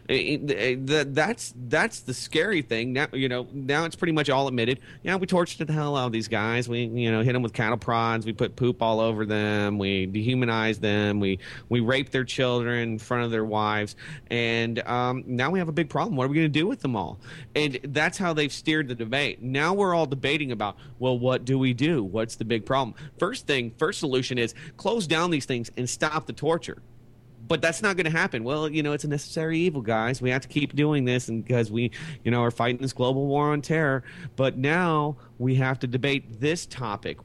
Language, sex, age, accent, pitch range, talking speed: English, male, 30-49, American, 120-150 Hz, 225 wpm